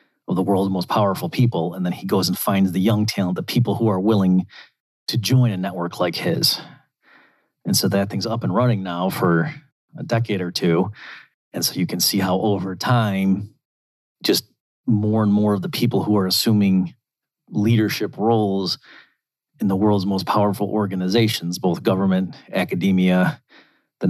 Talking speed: 170 wpm